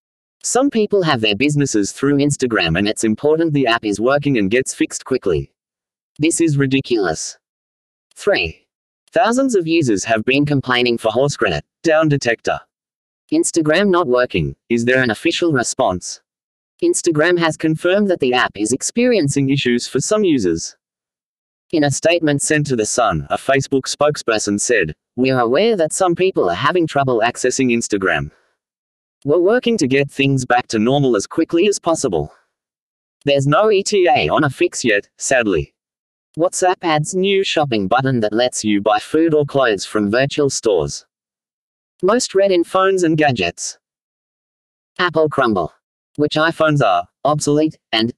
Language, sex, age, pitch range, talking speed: English, male, 30-49, 125-175 Hz, 155 wpm